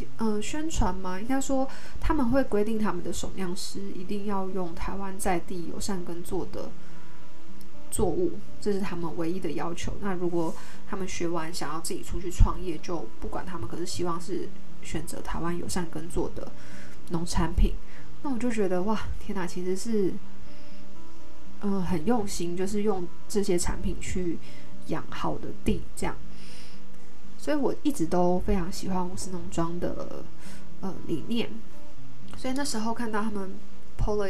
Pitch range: 175-205 Hz